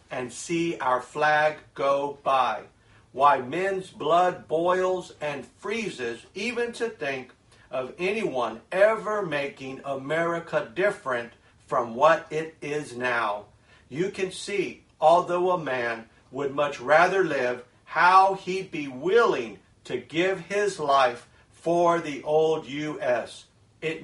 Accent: American